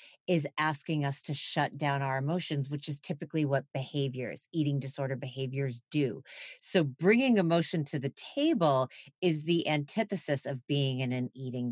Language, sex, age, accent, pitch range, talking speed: English, female, 40-59, American, 140-195 Hz, 160 wpm